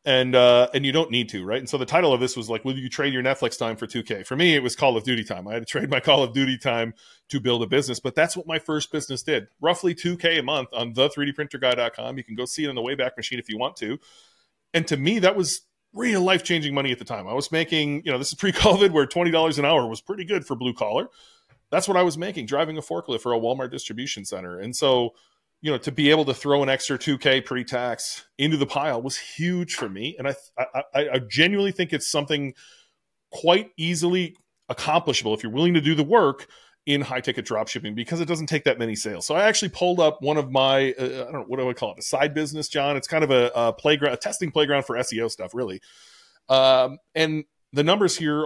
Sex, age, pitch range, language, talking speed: male, 30-49, 125-165 Hz, English, 255 wpm